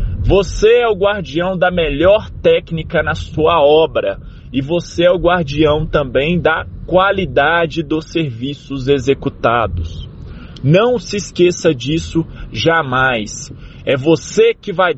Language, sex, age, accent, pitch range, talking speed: Portuguese, male, 20-39, Brazilian, 145-200 Hz, 120 wpm